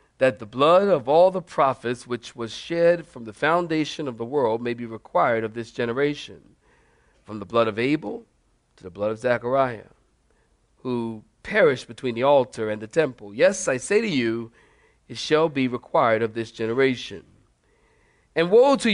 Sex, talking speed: male, 175 wpm